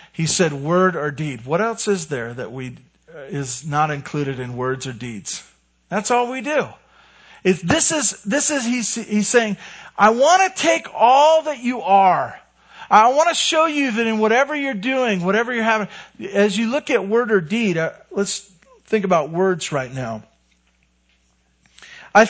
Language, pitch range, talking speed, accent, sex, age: English, 155-245 Hz, 180 wpm, American, male, 50-69